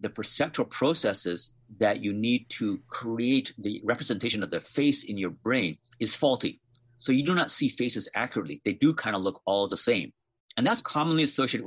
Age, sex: 50-69, male